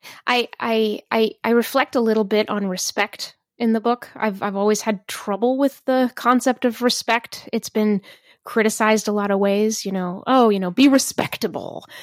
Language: English